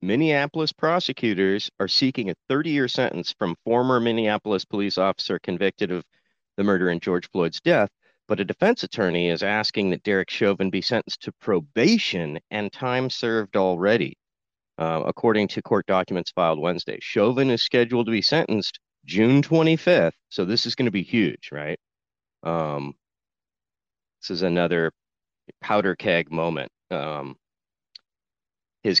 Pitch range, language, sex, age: 90-120 Hz, English, male, 40-59